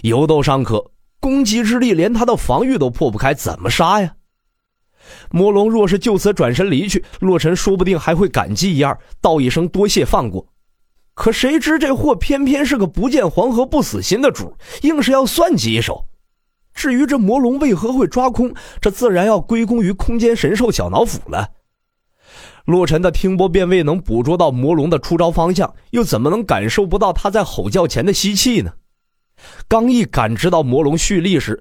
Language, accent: Chinese, native